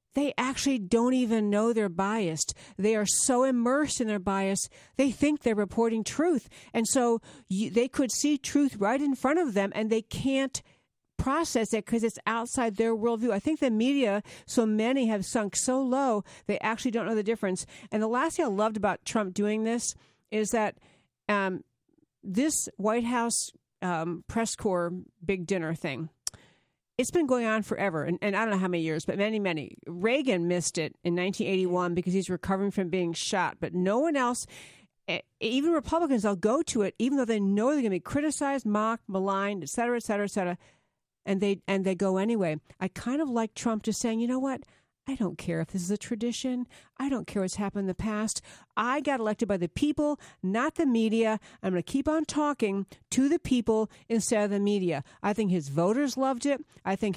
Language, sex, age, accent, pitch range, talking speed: English, female, 50-69, American, 190-250 Hz, 205 wpm